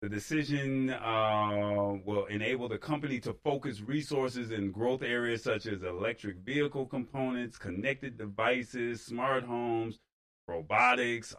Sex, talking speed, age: male, 120 wpm, 30-49